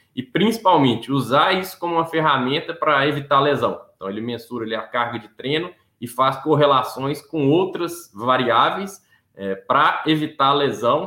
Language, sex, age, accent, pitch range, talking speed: Portuguese, male, 20-39, Brazilian, 120-150 Hz, 140 wpm